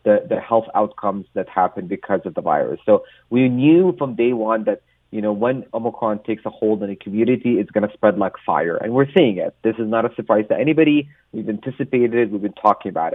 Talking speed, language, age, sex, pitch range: 235 wpm, English, 30-49, male, 105-135 Hz